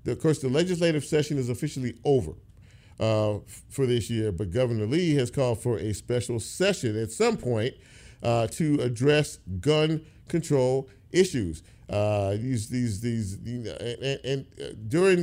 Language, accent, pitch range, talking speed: English, American, 105-140 Hz, 160 wpm